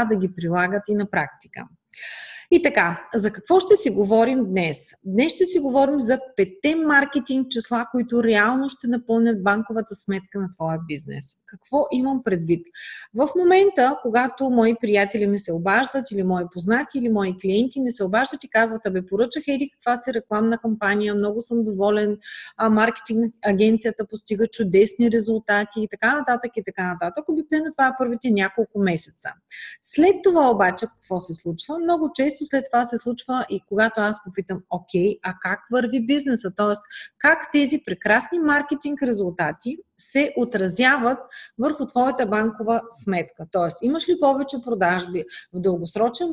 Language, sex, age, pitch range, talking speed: Bulgarian, female, 30-49, 200-270 Hz, 155 wpm